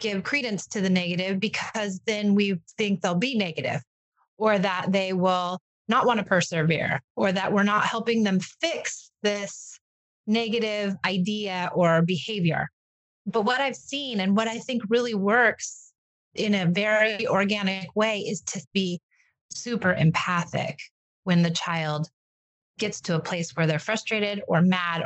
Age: 30-49